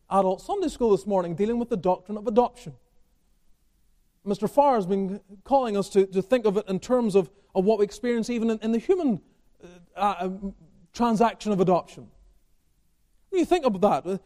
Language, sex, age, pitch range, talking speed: English, male, 30-49, 190-290 Hz, 185 wpm